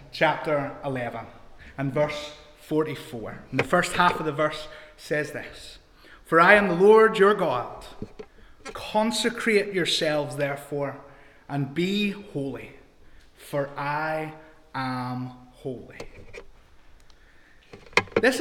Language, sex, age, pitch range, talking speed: English, male, 30-49, 140-175 Hz, 105 wpm